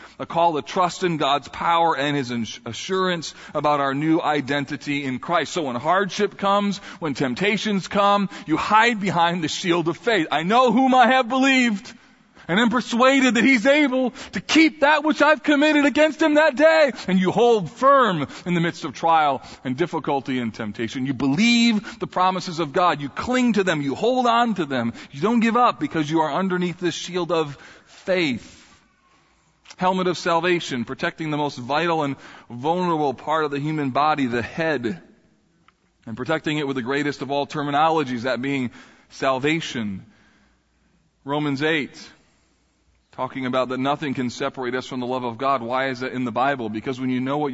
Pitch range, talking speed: 135-200 Hz, 185 wpm